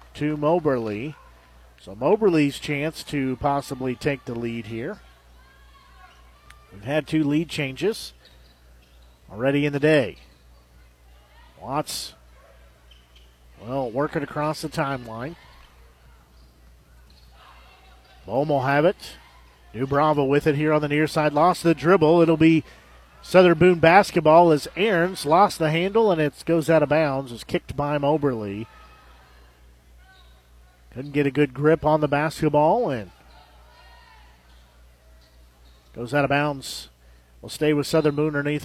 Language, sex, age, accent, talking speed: English, male, 50-69, American, 125 wpm